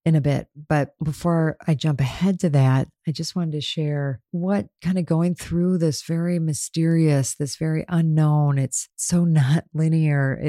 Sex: female